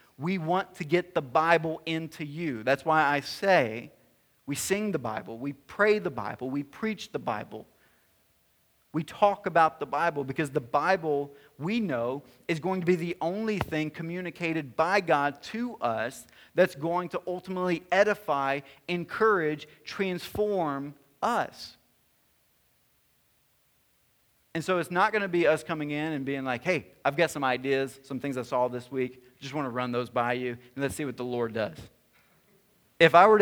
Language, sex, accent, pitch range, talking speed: English, male, American, 130-170 Hz, 170 wpm